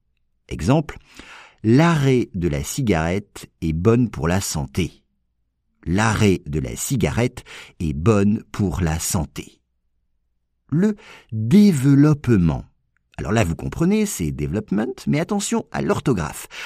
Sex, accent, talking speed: male, French, 110 wpm